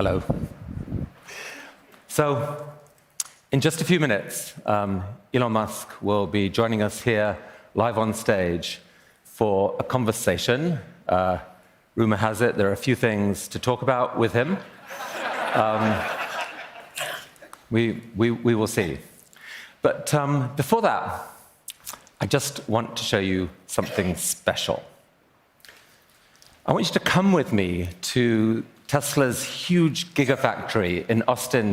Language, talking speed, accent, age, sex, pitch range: English, 125 wpm, British, 40-59, male, 110-155 Hz